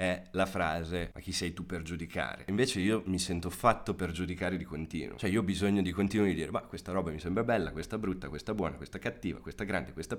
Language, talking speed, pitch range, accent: Italian, 240 wpm, 95-120 Hz, native